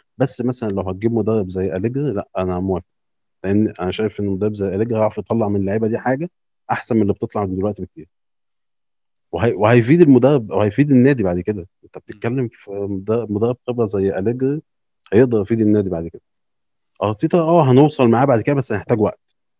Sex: male